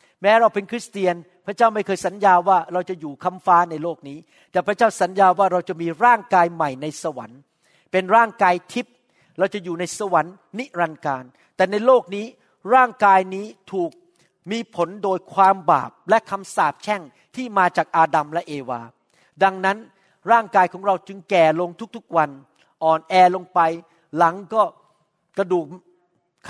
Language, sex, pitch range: Thai, male, 175-225 Hz